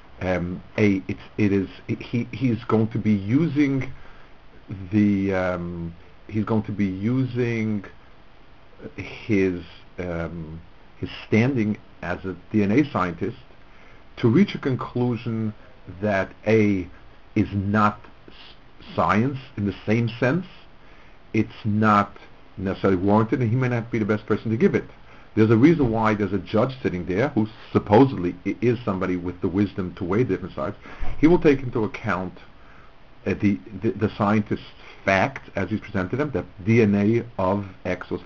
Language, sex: English, male